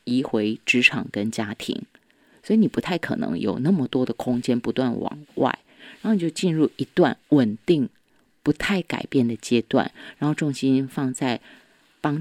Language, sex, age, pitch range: Chinese, female, 30-49, 125-210 Hz